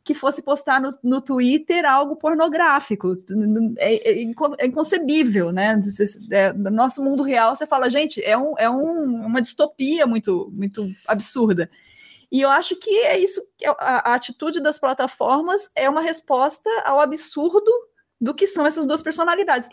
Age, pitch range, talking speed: 20-39, 225-325 Hz, 165 wpm